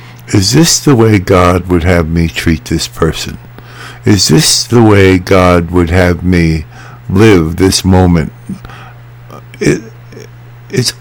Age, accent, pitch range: 60-79, American, 85-120 Hz